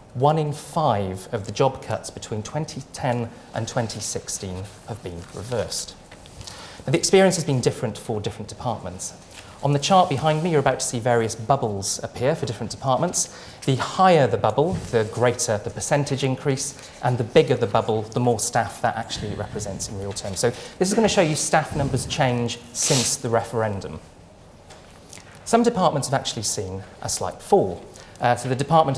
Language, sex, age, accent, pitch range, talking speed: English, male, 30-49, British, 105-140 Hz, 180 wpm